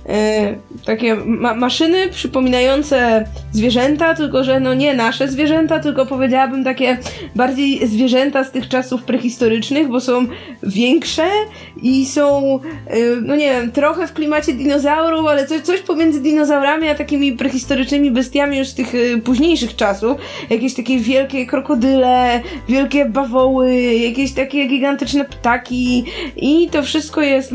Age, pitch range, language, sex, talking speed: 20-39, 225-280 Hz, Polish, female, 135 wpm